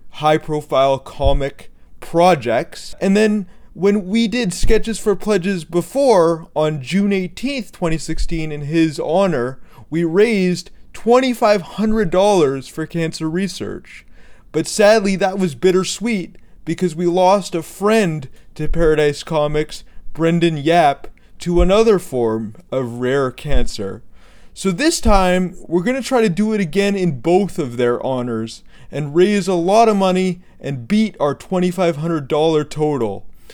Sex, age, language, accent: male, 30-49, English, American